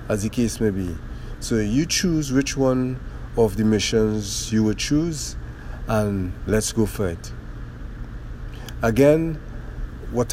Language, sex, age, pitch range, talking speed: English, male, 50-69, 115-135 Hz, 135 wpm